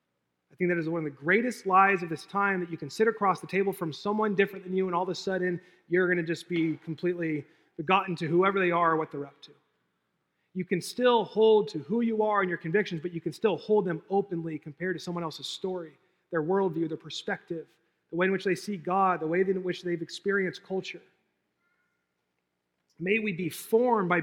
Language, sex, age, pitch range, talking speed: English, male, 30-49, 145-190 Hz, 225 wpm